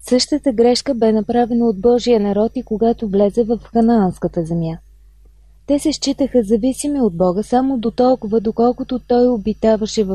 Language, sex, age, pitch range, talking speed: Bulgarian, female, 20-39, 205-245 Hz, 155 wpm